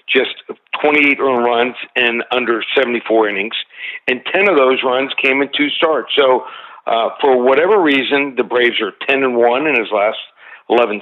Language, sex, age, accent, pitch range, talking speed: English, male, 50-69, American, 120-140 Hz, 175 wpm